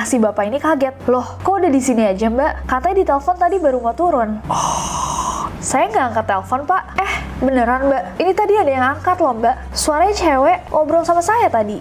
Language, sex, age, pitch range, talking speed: Indonesian, female, 20-39, 240-340 Hz, 205 wpm